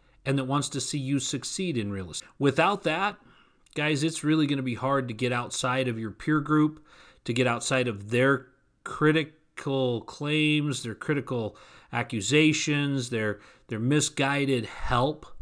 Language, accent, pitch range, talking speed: English, American, 120-150 Hz, 155 wpm